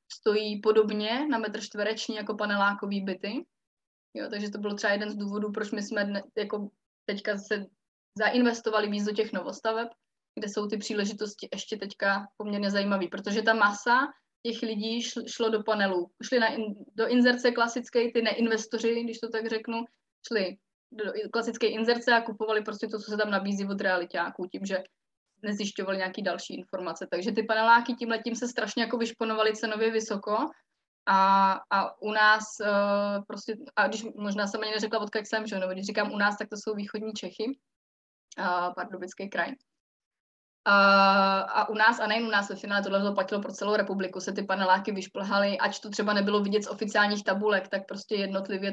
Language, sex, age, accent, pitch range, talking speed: Czech, female, 20-39, native, 200-220 Hz, 180 wpm